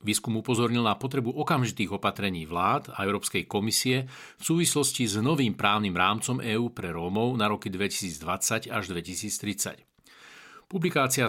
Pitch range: 105-135 Hz